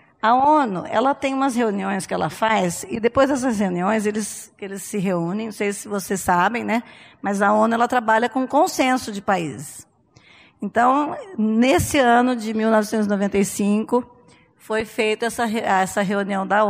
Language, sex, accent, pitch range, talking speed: Portuguese, female, Brazilian, 210-270 Hz, 155 wpm